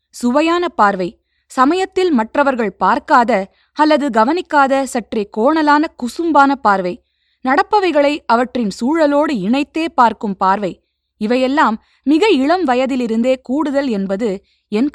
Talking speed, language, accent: 95 wpm, Tamil, native